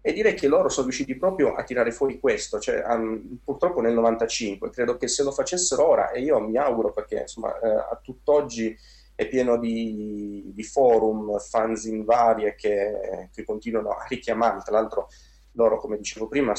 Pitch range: 105-125 Hz